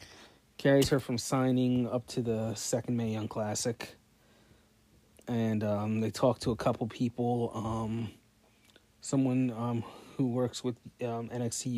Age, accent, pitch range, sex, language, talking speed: 30-49, American, 110-125 Hz, male, English, 140 wpm